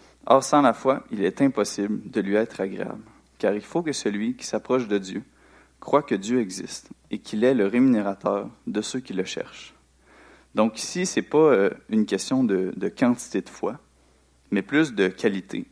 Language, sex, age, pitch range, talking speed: French, male, 30-49, 95-125 Hz, 200 wpm